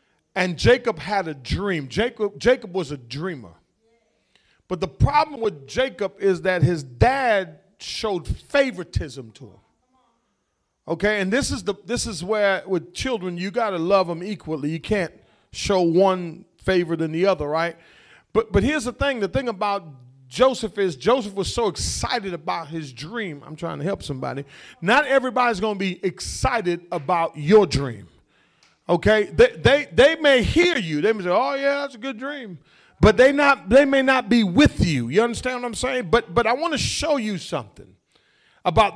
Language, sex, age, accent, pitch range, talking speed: English, male, 40-59, American, 170-255 Hz, 180 wpm